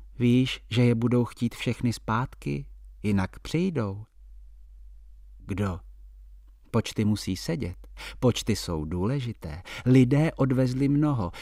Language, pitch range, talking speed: Czech, 90-125 Hz, 100 wpm